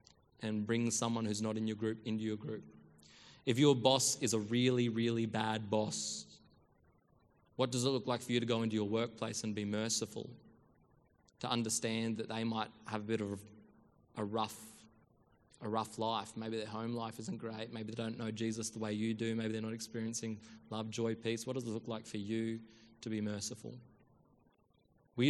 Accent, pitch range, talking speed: Australian, 110-115 Hz, 195 wpm